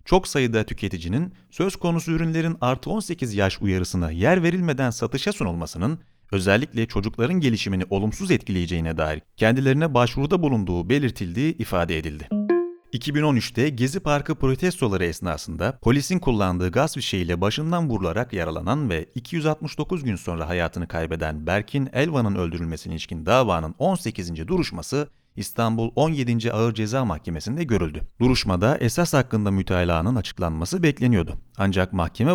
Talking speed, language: 120 wpm, Turkish